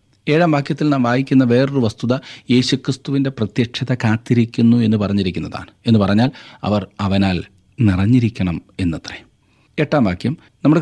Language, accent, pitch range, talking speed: Malayalam, native, 105-130 Hz, 105 wpm